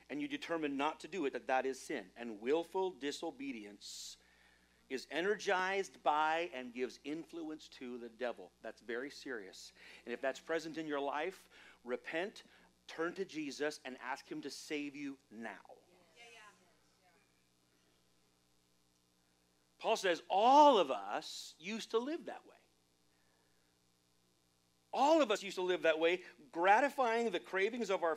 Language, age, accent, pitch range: English, 40-59, American, 125-195 Hz